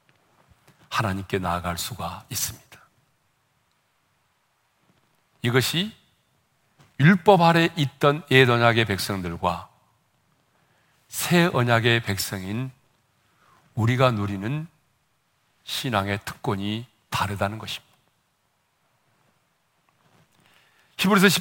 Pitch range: 115-185 Hz